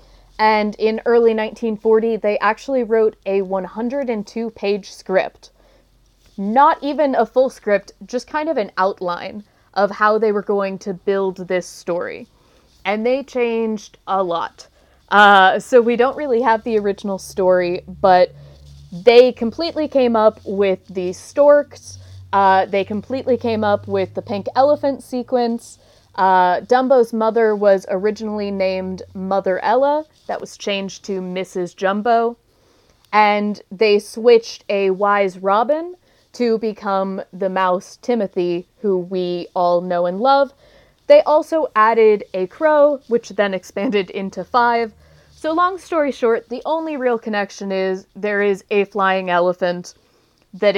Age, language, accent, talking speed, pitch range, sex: 20-39, English, American, 140 wpm, 190-235 Hz, female